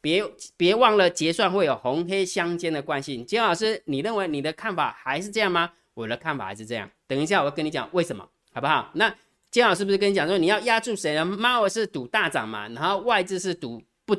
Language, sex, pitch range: Chinese, male, 135-200 Hz